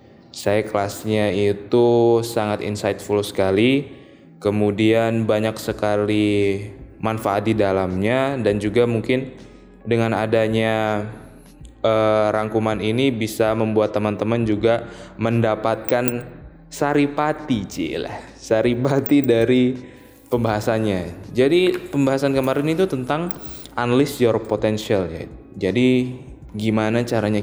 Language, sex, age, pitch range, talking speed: Indonesian, male, 10-29, 105-125 Hz, 90 wpm